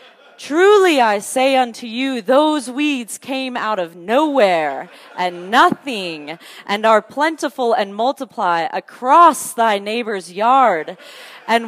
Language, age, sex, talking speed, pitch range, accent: English, 30-49, female, 120 wpm, 180-255 Hz, American